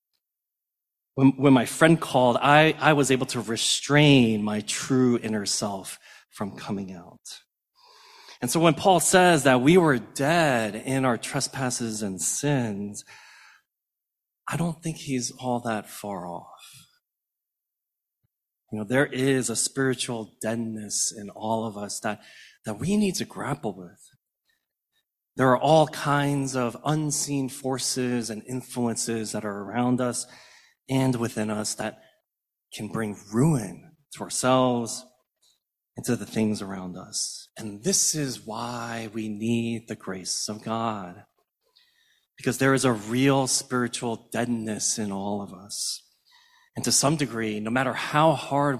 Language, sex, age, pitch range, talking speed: English, male, 30-49, 110-145 Hz, 140 wpm